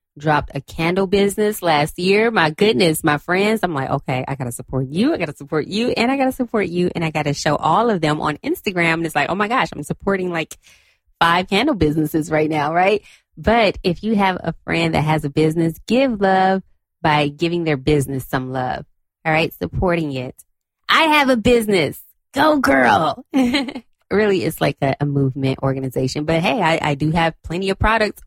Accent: American